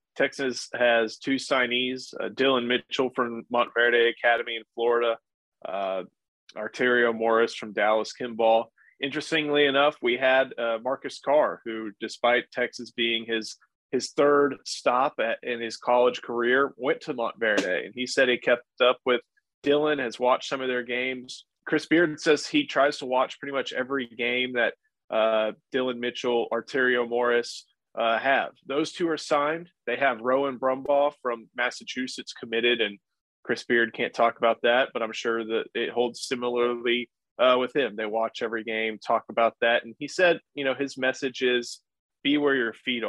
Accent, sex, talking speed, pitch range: American, male, 170 wpm, 115-135 Hz